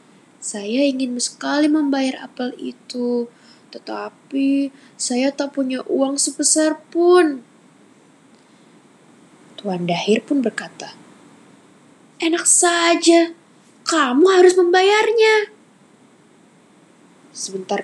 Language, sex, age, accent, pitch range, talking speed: Indonesian, female, 10-29, native, 220-325 Hz, 75 wpm